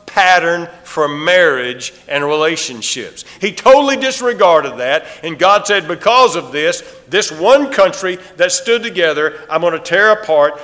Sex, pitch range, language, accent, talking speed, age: male, 185-265 Hz, English, American, 145 wpm, 50-69